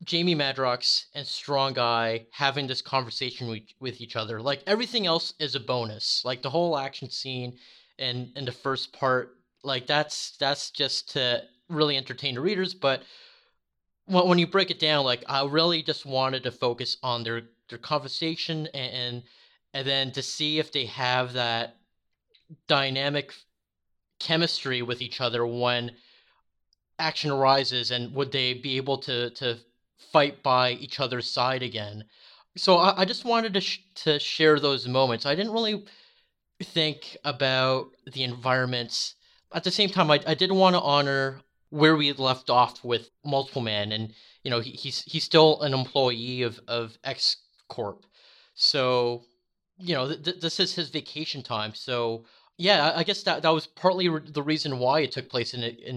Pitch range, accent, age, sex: 125-160 Hz, American, 30-49, male